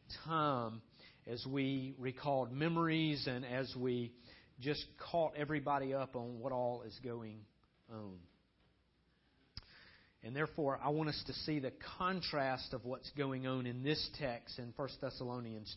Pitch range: 125-170 Hz